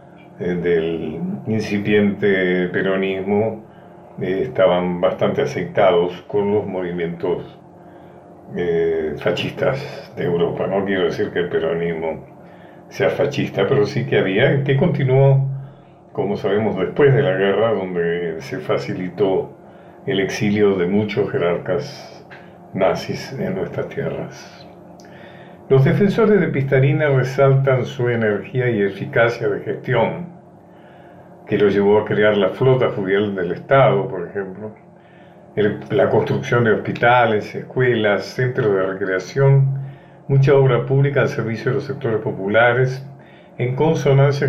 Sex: male